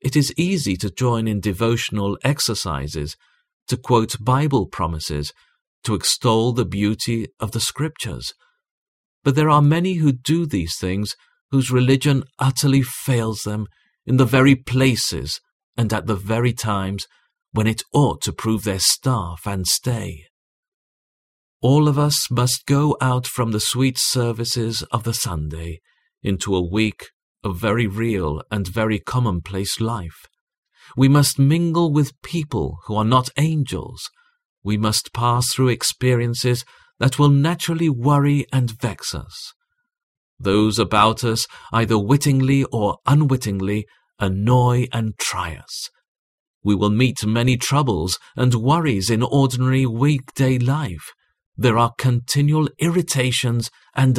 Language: English